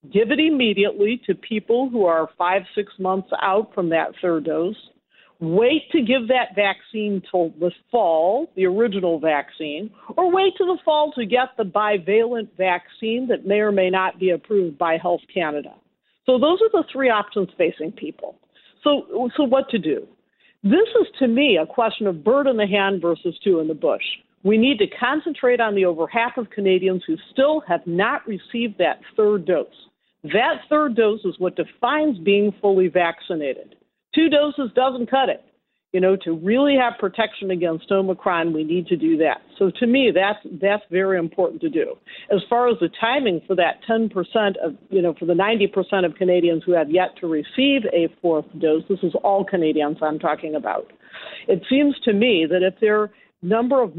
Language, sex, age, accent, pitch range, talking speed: English, female, 50-69, American, 180-245 Hz, 190 wpm